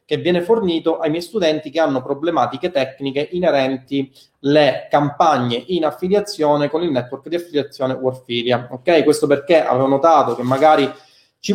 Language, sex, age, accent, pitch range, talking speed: Italian, male, 30-49, native, 140-190 Hz, 150 wpm